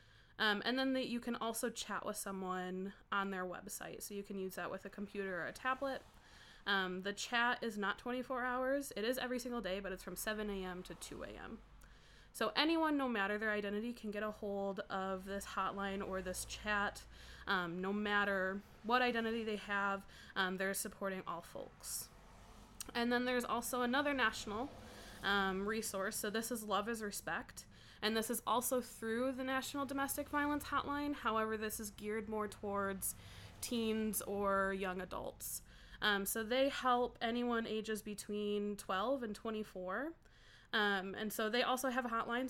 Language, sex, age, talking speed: English, female, 20-39, 175 wpm